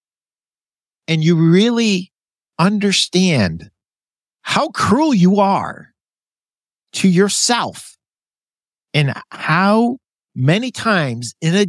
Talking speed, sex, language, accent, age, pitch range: 80 wpm, male, English, American, 50-69, 135-200 Hz